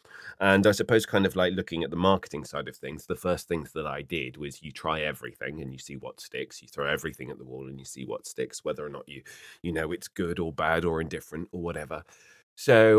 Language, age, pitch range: English, 30-49, 80-95 Hz